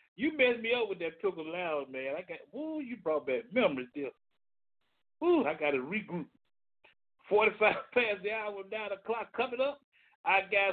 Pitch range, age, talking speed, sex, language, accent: 155-225 Hz, 60-79, 180 wpm, male, English, American